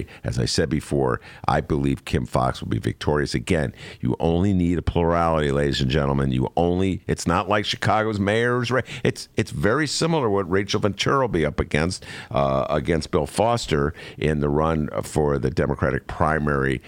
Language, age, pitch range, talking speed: English, 50-69, 70-100 Hz, 170 wpm